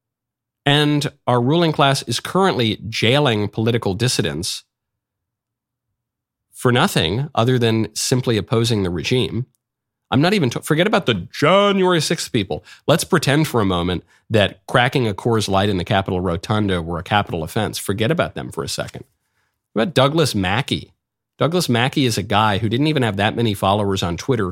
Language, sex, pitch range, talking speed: English, male, 105-140 Hz, 165 wpm